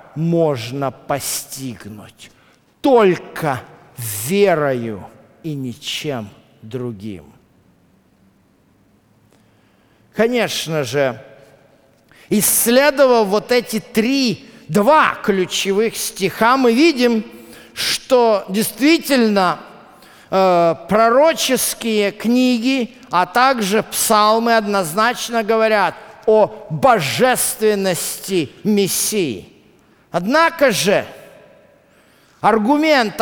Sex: male